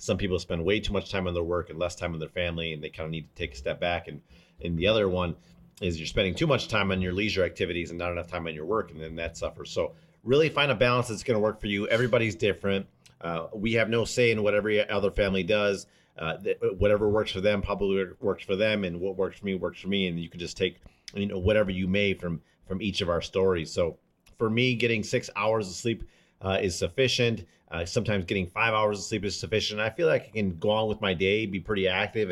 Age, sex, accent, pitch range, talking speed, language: 40-59, male, American, 90-115 Hz, 265 wpm, English